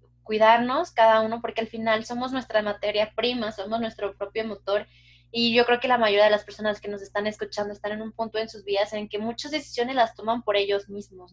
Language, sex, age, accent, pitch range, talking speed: Spanish, female, 20-39, Mexican, 205-230 Hz, 230 wpm